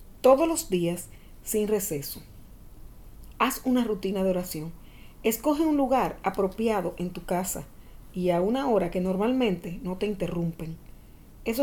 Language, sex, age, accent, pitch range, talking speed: Spanish, female, 40-59, American, 180-250 Hz, 140 wpm